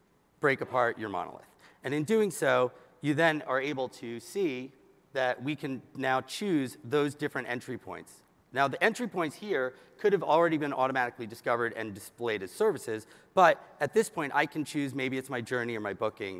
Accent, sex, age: American, male, 40-59